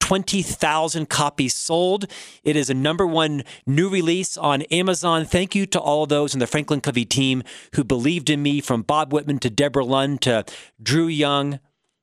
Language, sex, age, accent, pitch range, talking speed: English, male, 40-59, American, 135-170 Hz, 175 wpm